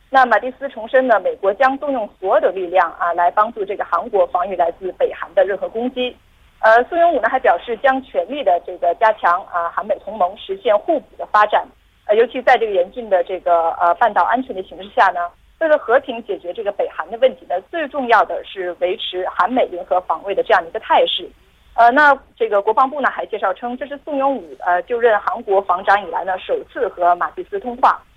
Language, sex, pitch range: Korean, female, 185-285 Hz